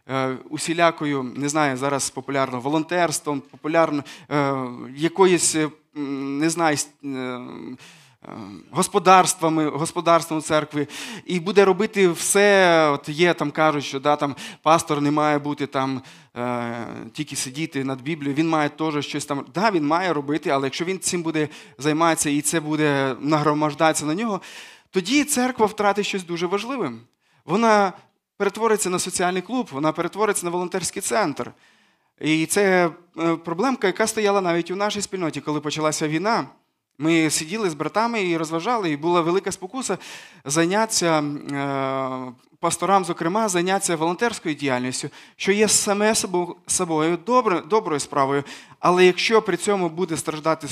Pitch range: 145-185 Hz